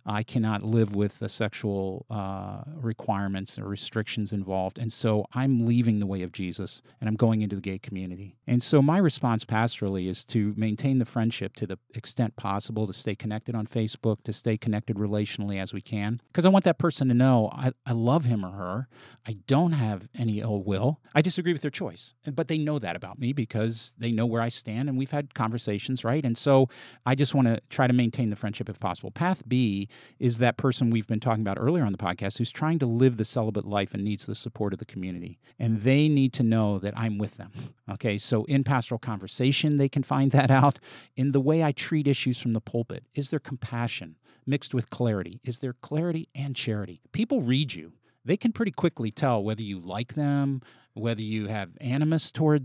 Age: 40-59